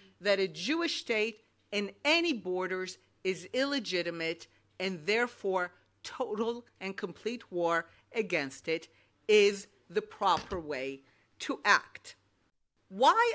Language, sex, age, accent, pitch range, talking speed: English, female, 50-69, American, 175-270 Hz, 110 wpm